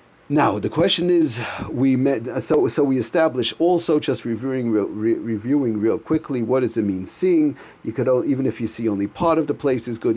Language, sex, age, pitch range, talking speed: English, male, 40-59, 110-145 Hz, 215 wpm